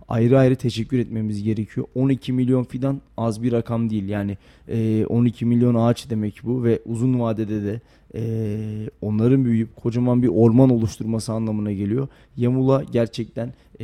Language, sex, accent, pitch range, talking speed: Turkish, male, native, 110-120 Hz, 140 wpm